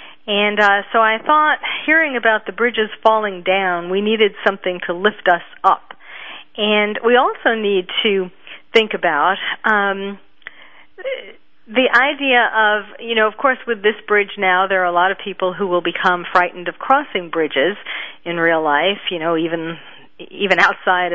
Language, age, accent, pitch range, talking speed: English, 40-59, American, 175-220 Hz, 165 wpm